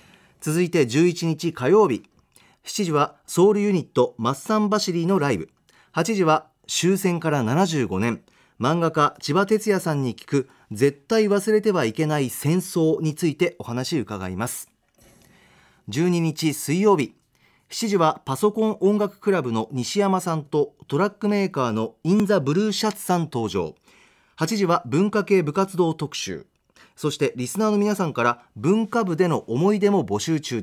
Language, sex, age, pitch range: Japanese, male, 40-59, 135-195 Hz